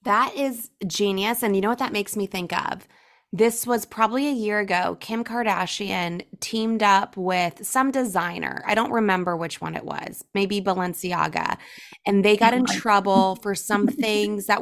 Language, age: English, 20-39